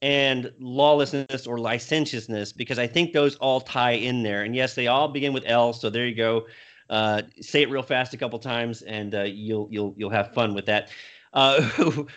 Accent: American